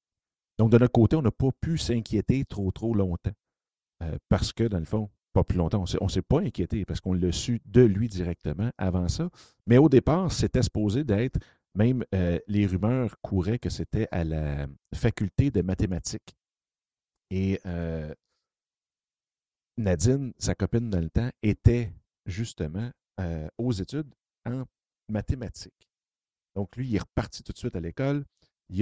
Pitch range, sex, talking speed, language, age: 90-110 Hz, male, 165 wpm, French, 50-69